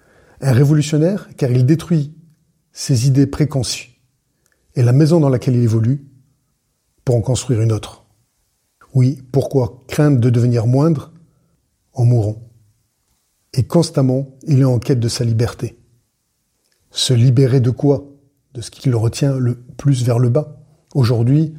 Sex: male